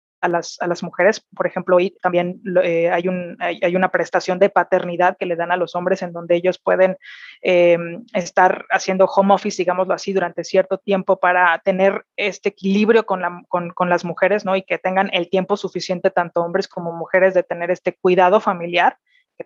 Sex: female